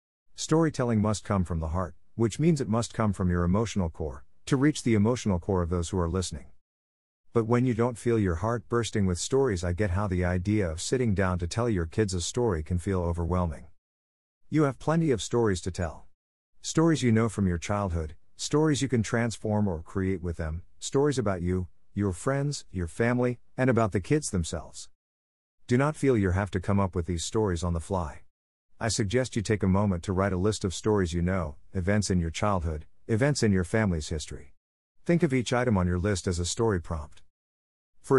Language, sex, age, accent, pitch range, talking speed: English, male, 50-69, American, 85-115 Hz, 210 wpm